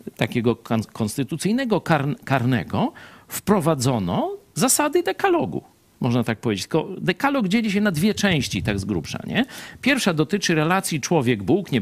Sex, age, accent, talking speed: male, 50-69, native, 125 wpm